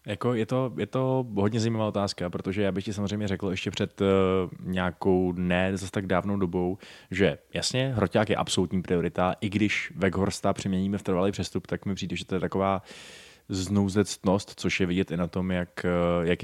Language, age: Czech, 20-39